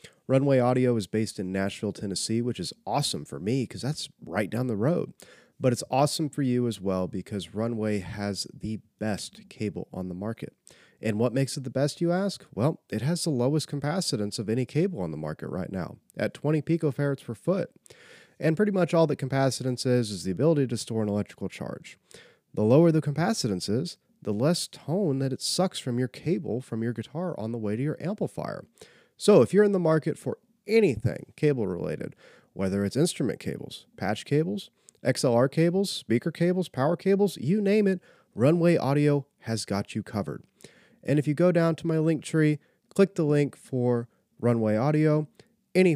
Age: 30-49